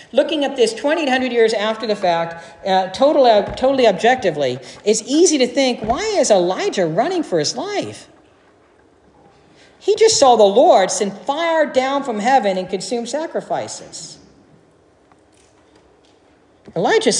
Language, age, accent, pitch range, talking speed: English, 50-69, American, 210-280 Hz, 135 wpm